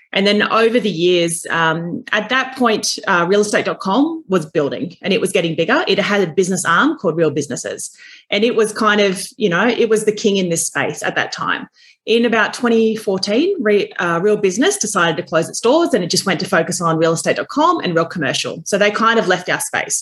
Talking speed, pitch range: 220 wpm, 170-220 Hz